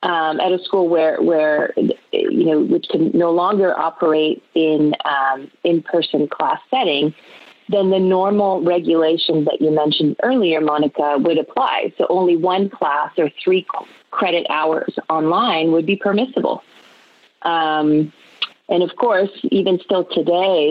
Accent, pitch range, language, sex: American, 150-180 Hz, English, female